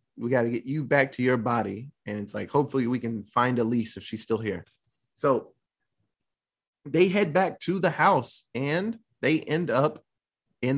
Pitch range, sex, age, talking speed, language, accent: 120-165 Hz, male, 20-39, 190 wpm, English, American